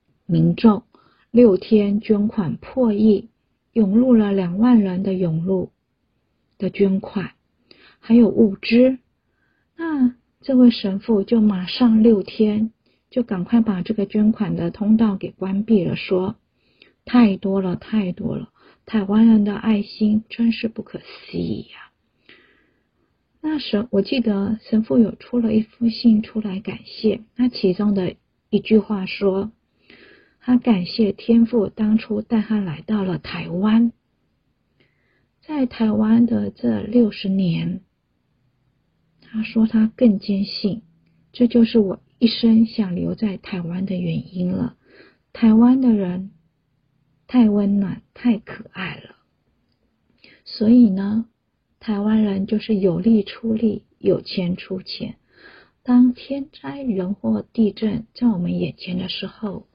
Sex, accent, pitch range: female, native, 195-230 Hz